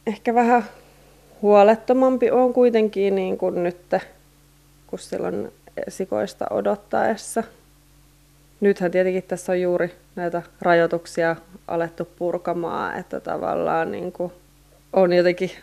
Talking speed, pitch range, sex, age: 100 wpm, 170-205 Hz, female, 20-39